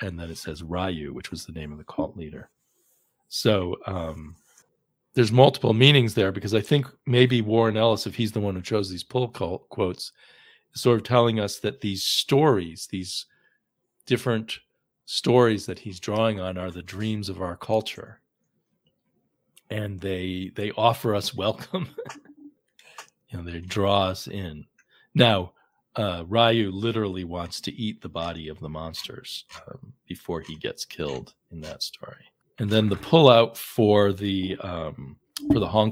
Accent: American